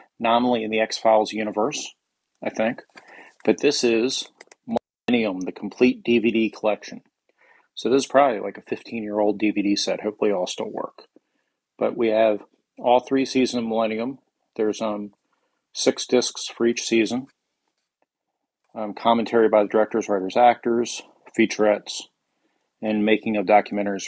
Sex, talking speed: male, 135 wpm